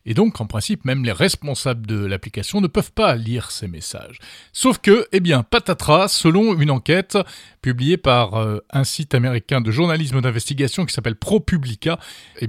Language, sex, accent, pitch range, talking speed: French, male, French, 120-170 Hz, 175 wpm